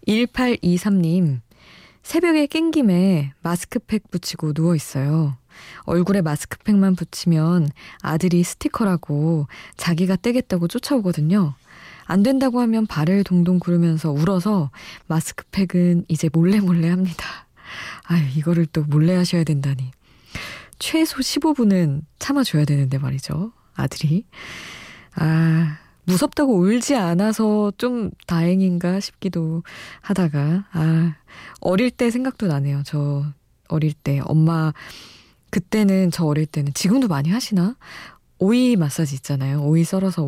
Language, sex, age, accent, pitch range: Korean, female, 20-39, native, 155-205 Hz